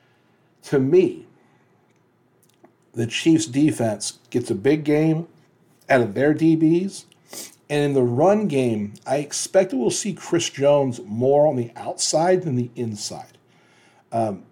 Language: English